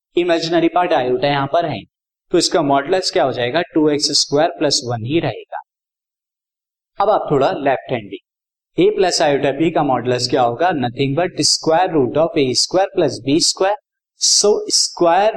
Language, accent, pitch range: Hindi, native, 135-180 Hz